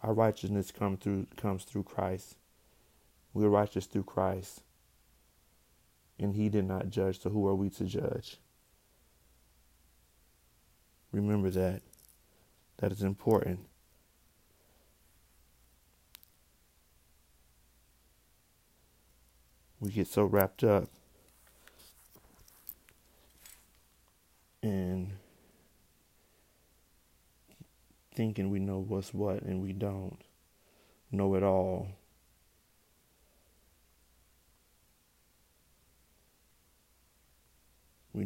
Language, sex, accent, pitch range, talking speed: English, male, American, 75-100 Hz, 70 wpm